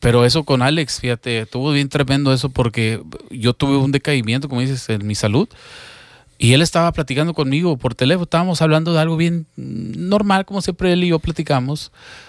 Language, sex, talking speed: Spanish, male, 185 wpm